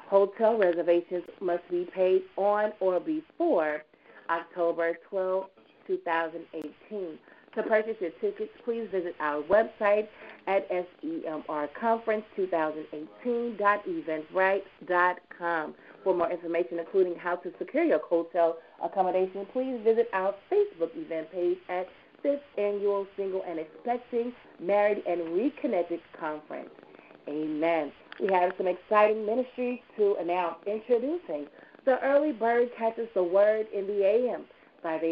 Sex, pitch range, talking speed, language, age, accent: female, 165-225 Hz, 115 wpm, English, 30-49, American